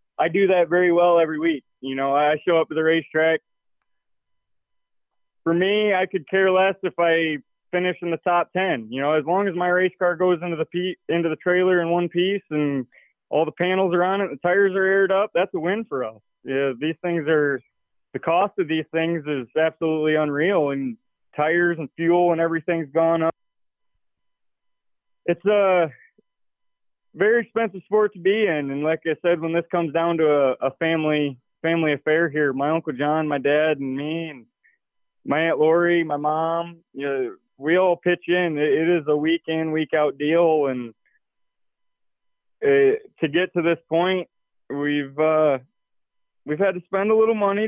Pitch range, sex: 150-180 Hz, male